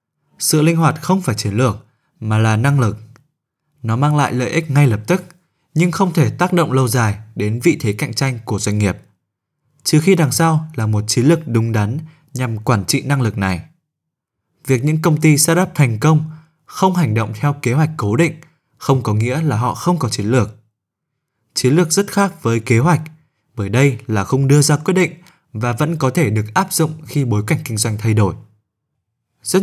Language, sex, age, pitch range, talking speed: Vietnamese, male, 20-39, 110-155 Hz, 210 wpm